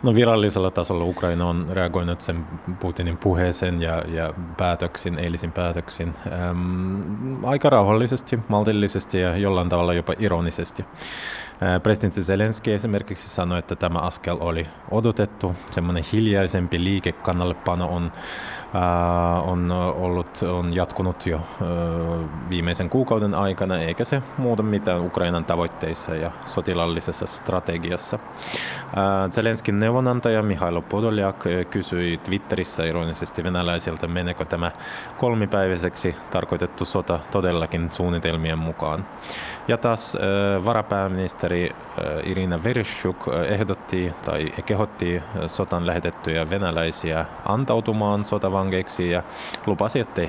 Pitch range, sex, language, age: 85-105 Hz, male, Finnish, 20-39